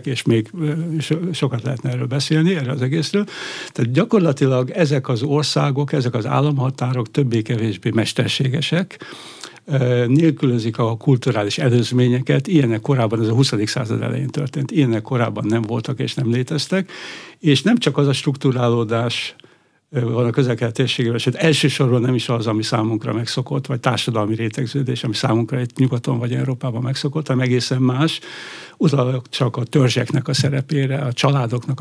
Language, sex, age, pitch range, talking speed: Hungarian, male, 60-79, 120-145 Hz, 140 wpm